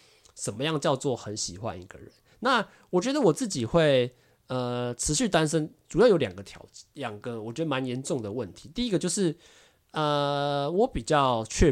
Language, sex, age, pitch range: Chinese, male, 20-39, 105-145 Hz